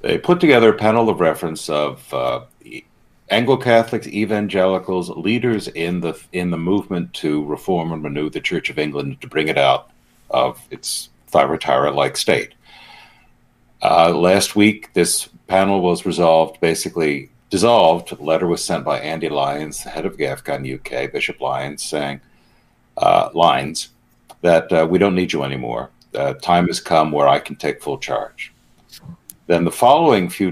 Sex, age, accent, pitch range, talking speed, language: male, 60-79, American, 75-90 Hz, 155 wpm, English